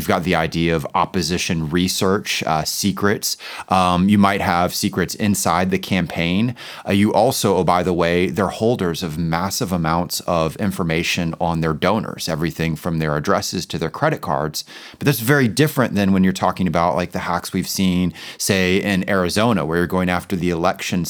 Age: 30-49